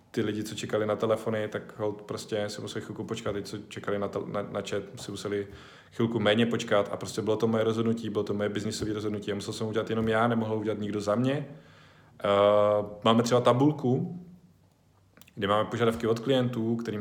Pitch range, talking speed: 100-115 Hz, 200 wpm